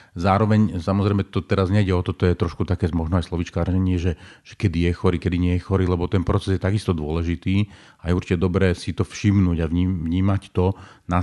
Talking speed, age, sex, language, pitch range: 215 wpm, 40-59, male, Slovak, 90-100 Hz